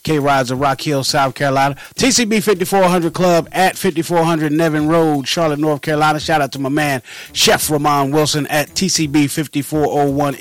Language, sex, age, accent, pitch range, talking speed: English, male, 30-49, American, 145-185 Hz, 155 wpm